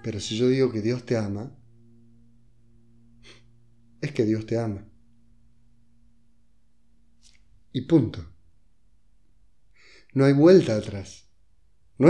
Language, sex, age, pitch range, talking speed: Spanish, male, 30-49, 110-140 Hz, 100 wpm